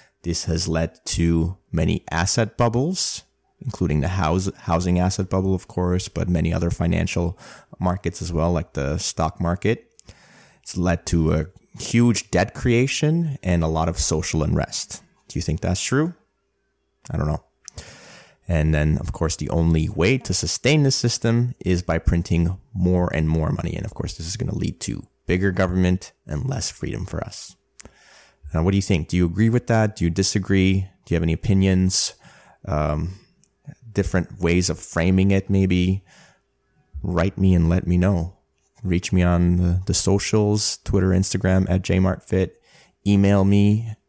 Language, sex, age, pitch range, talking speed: English, male, 20-39, 85-100 Hz, 165 wpm